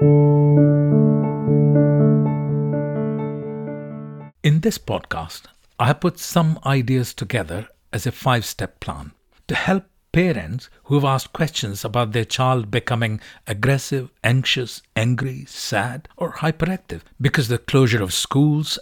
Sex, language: male, English